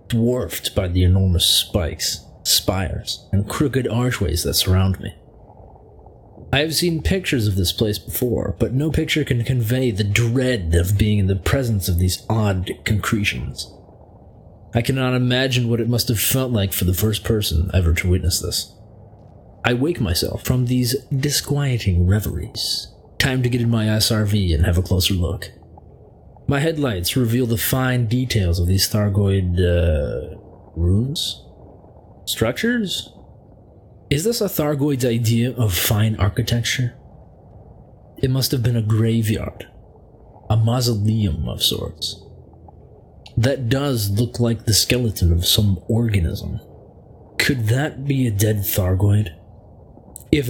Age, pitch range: 30-49, 95-125 Hz